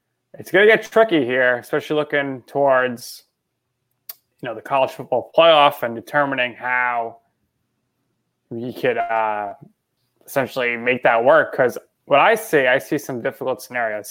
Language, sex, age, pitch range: English, male, 20-39, 120-150 Hz